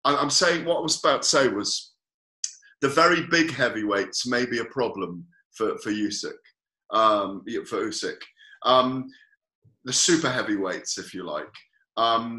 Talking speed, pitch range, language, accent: 150 wpm, 120-165 Hz, English, British